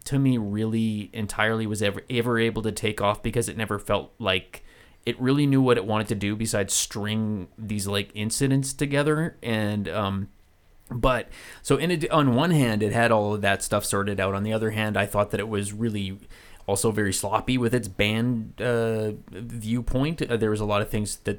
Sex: male